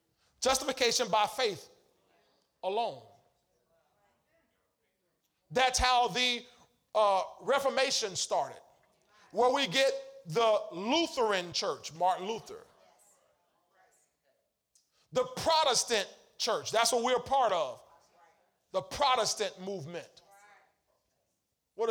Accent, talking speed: American, 80 wpm